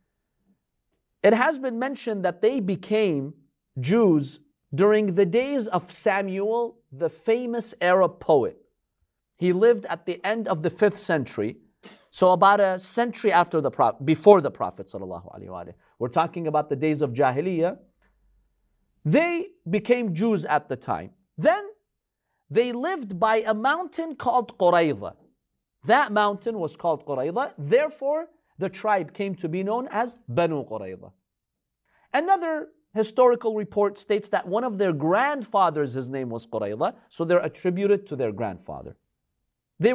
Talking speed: 140 wpm